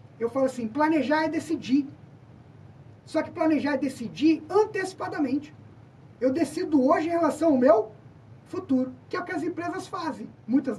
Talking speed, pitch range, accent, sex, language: 155 wpm, 235-335 Hz, Brazilian, male, Portuguese